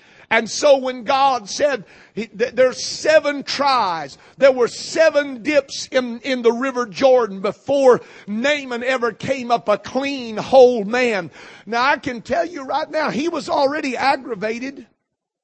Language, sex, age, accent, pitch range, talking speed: English, male, 50-69, American, 245-290 Hz, 145 wpm